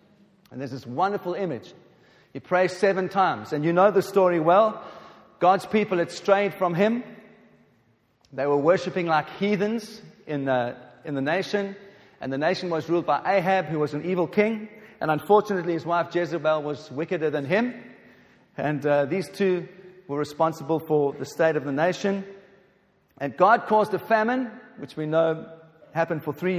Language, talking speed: English, 165 wpm